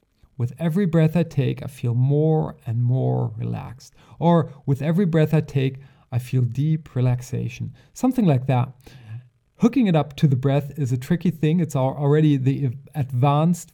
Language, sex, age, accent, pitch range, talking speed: English, male, 40-59, German, 130-155 Hz, 165 wpm